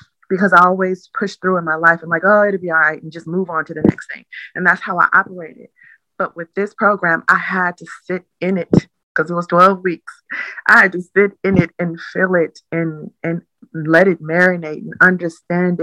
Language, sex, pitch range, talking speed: English, female, 165-185 Hz, 225 wpm